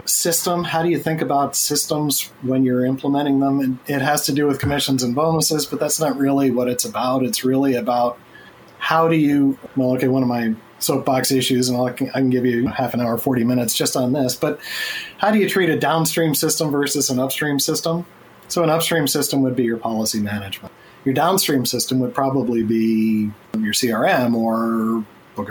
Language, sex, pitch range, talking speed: English, male, 125-160 Hz, 195 wpm